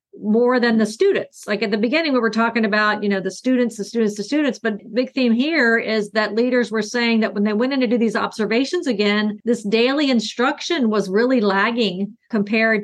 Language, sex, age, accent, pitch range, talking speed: English, female, 50-69, American, 210-250 Hz, 215 wpm